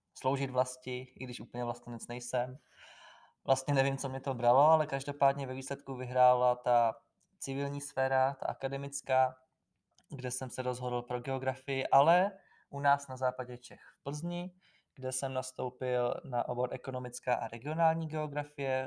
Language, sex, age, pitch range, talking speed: Czech, male, 20-39, 125-140 Hz, 150 wpm